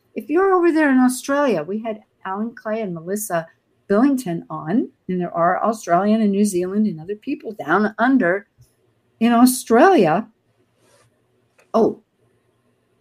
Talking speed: 135 wpm